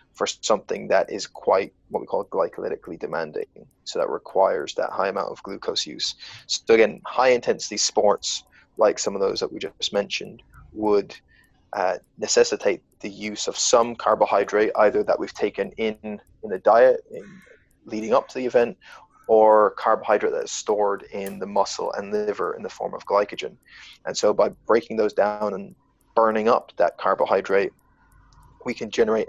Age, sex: 20-39, male